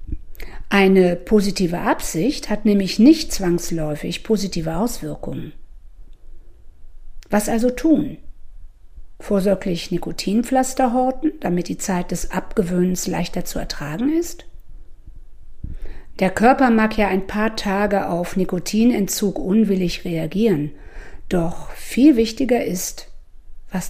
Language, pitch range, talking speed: German, 165-225 Hz, 100 wpm